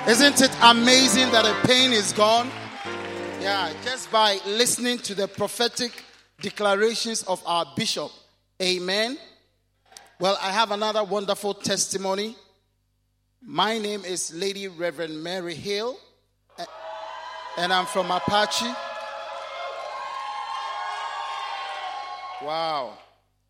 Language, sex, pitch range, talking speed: English, male, 165-210 Hz, 95 wpm